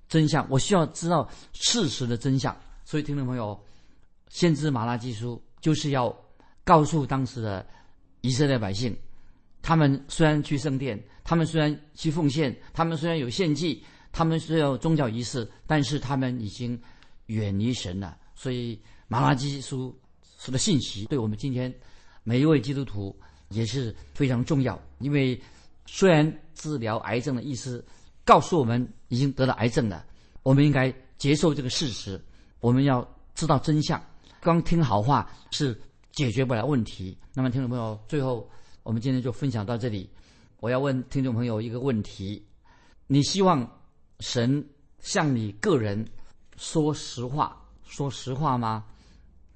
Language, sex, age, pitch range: Chinese, male, 50-69, 110-145 Hz